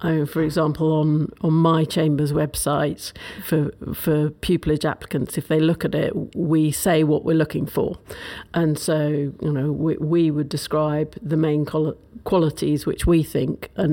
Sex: female